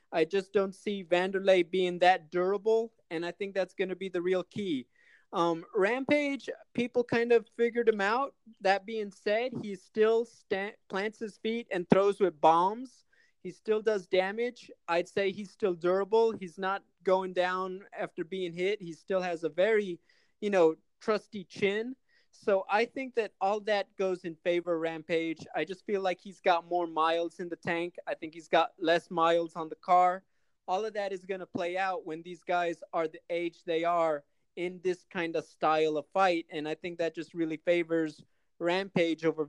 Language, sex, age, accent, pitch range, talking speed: English, male, 30-49, American, 175-210 Hz, 190 wpm